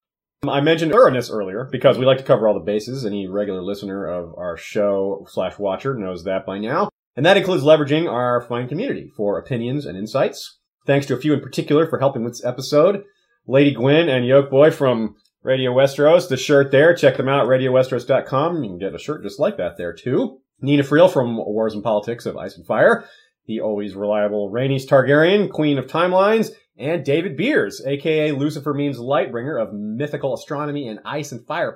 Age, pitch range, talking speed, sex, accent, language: 30-49, 120-165 Hz, 195 wpm, male, American, English